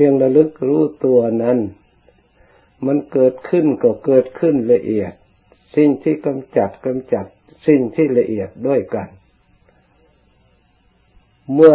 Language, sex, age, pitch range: Thai, male, 60-79, 105-140 Hz